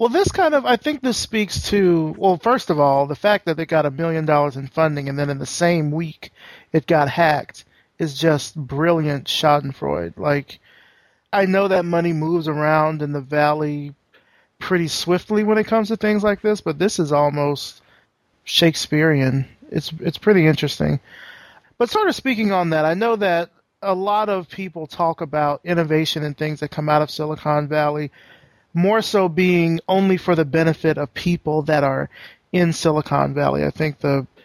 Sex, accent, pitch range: male, American, 150-180 Hz